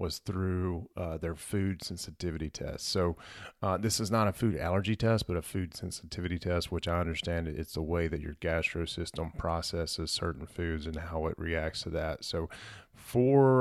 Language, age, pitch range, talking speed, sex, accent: English, 30-49, 80-95 Hz, 185 wpm, male, American